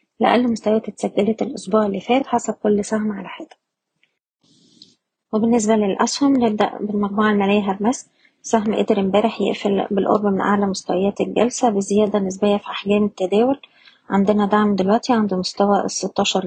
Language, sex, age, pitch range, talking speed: Arabic, female, 20-39, 195-225 Hz, 135 wpm